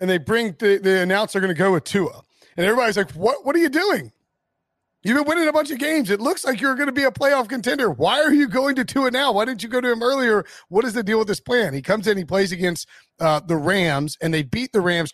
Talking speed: 280 wpm